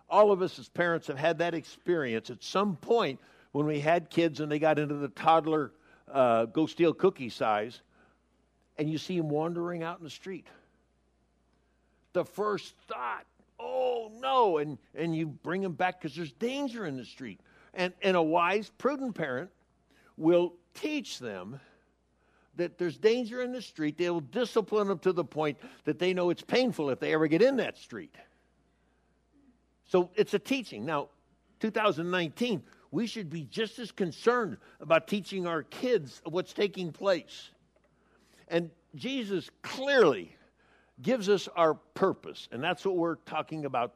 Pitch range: 155-210 Hz